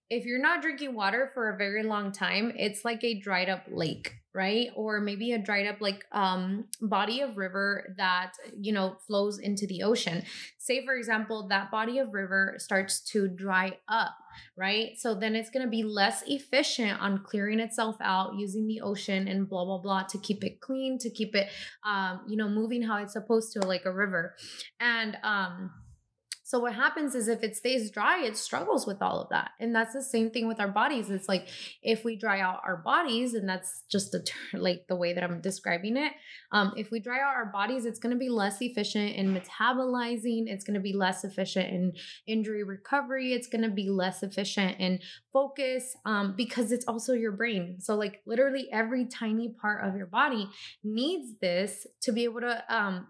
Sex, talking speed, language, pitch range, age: female, 205 wpm, English, 195-235 Hz, 20-39